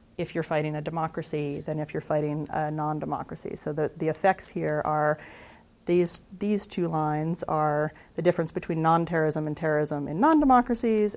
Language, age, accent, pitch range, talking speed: English, 30-49, American, 155-210 Hz, 160 wpm